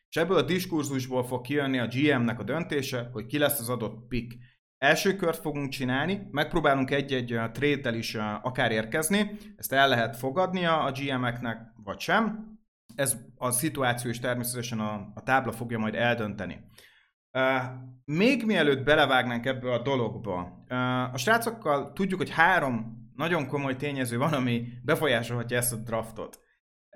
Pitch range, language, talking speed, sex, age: 115-145 Hz, Hungarian, 145 wpm, male, 30-49